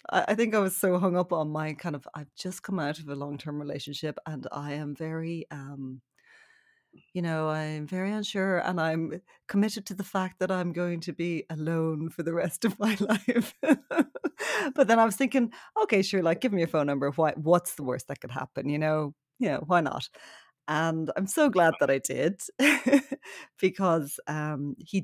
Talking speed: 200 wpm